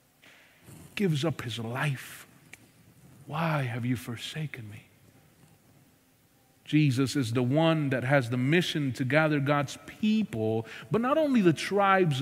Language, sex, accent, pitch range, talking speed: English, male, American, 130-170 Hz, 130 wpm